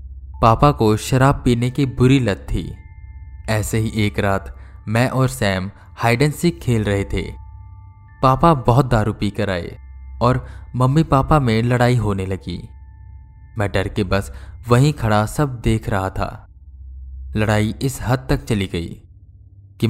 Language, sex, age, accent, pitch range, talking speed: Hindi, male, 20-39, native, 95-120 Hz, 150 wpm